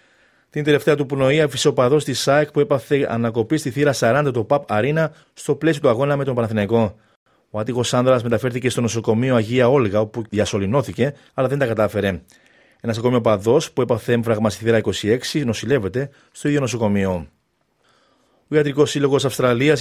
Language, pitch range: Greek, 110-135 Hz